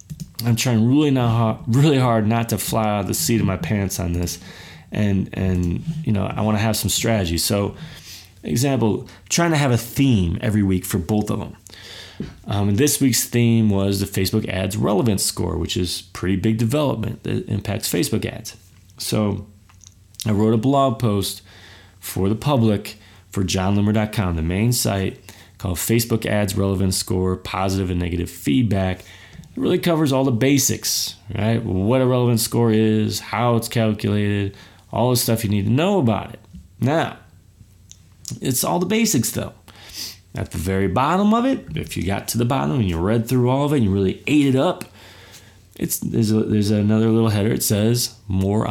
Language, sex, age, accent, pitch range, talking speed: English, male, 30-49, American, 95-115 Hz, 185 wpm